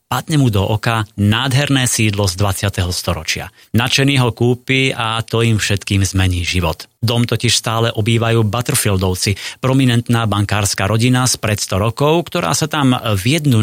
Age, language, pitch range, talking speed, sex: 30-49, Slovak, 100-125 Hz, 150 wpm, male